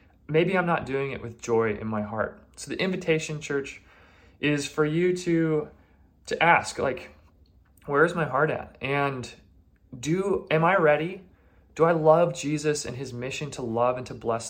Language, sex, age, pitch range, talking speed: English, male, 20-39, 115-145 Hz, 175 wpm